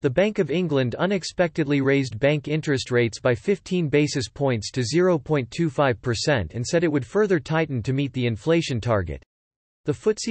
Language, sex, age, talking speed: English, male, 40-59, 165 wpm